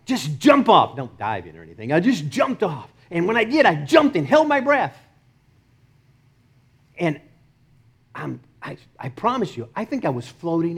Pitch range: 130-210 Hz